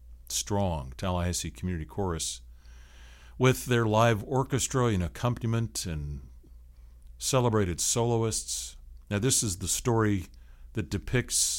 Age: 60-79